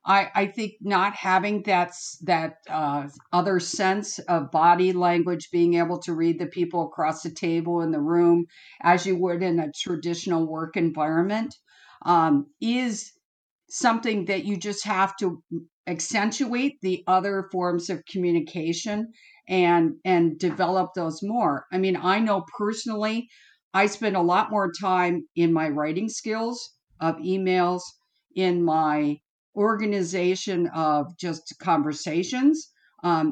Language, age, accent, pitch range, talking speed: English, 50-69, American, 165-205 Hz, 135 wpm